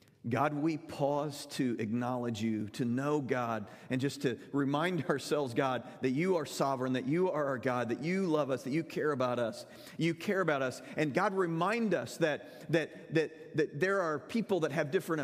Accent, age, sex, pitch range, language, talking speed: American, 40-59, male, 120-155 Hz, English, 200 wpm